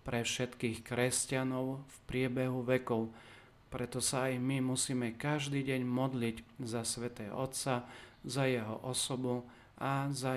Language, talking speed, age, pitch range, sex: Slovak, 125 wpm, 40-59, 120-135 Hz, male